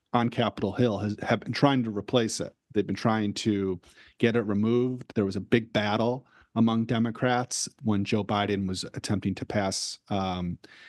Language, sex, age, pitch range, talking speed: English, male, 40-59, 100-120 Hz, 175 wpm